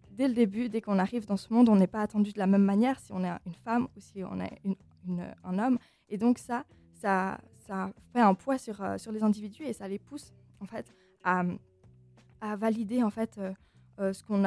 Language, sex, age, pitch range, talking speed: French, female, 20-39, 190-225 Hz, 230 wpm